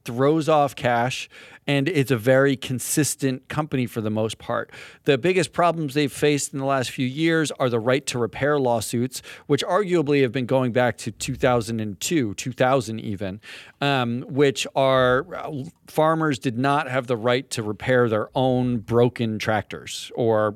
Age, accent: 40-59, American